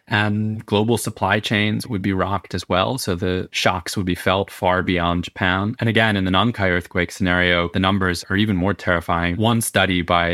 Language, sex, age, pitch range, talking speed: English, male, 20-39, 90-105 Hz, 195 wpm